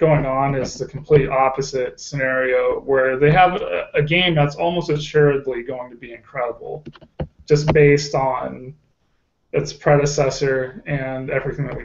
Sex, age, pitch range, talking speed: male, 20-39, 135-160 Hz, 145 wpm